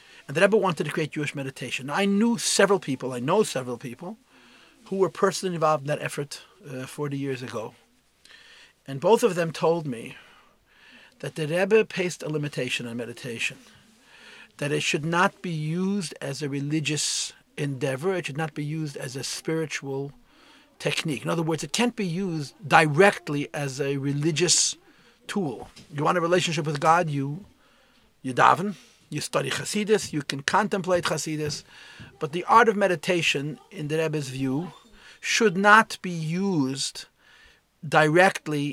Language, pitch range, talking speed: English, 140-180 Hz, 160 wpm